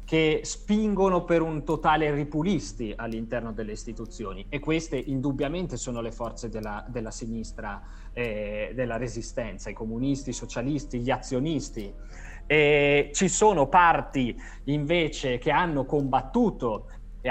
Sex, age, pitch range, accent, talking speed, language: male, 30-49, 115-150 Hz, native, 125 wpm, Italian